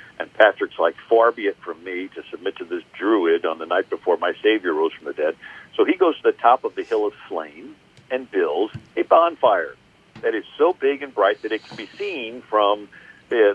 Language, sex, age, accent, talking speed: English, male, 50-69, American, 225 wpm